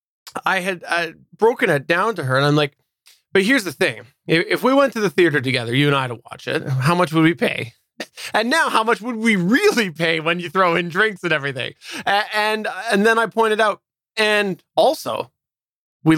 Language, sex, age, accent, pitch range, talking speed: English, male, 20-39, American, 140-195 Hz, 220 wpm